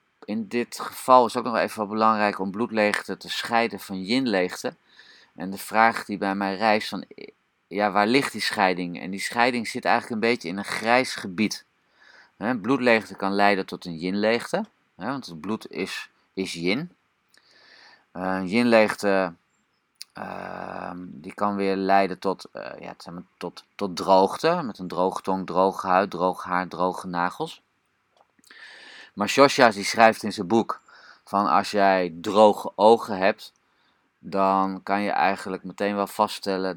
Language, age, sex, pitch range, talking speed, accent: Dutch, 30-49, male, 95-110 Hz, 150 wpm, Dutch